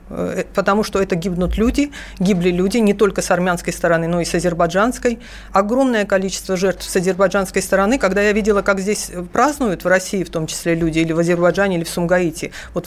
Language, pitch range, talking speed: Russian, 175-220 Hz, 190 wpm